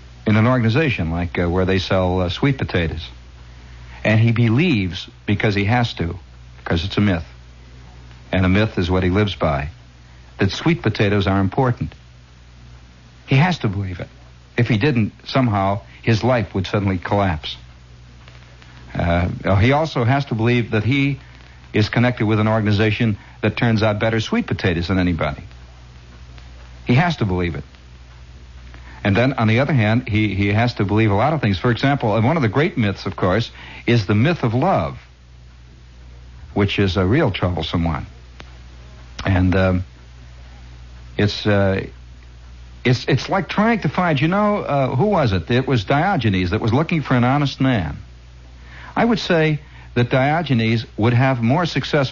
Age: 60-79